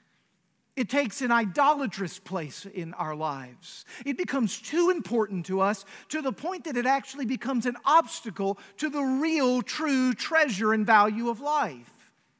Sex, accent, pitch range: male, American, 190-245 Hz